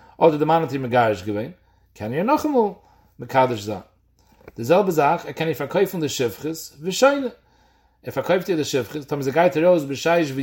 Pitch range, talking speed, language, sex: 135-205 Hz, 85 wpm, English, male